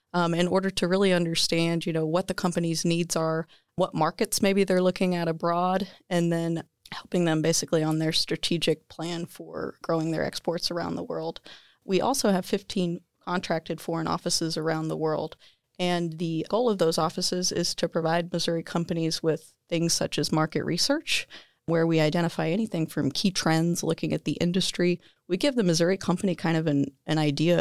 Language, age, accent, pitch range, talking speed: English, 30-49, American, 160-180 Hz, 185 wpm